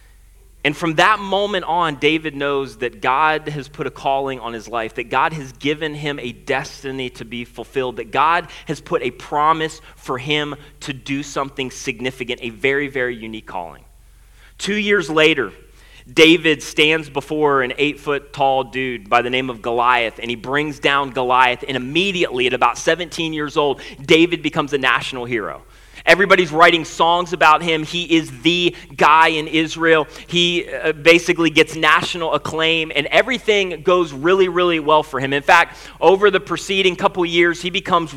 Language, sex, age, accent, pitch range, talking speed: English, male, 30-49, American, 140-175 Hz, 170 wpm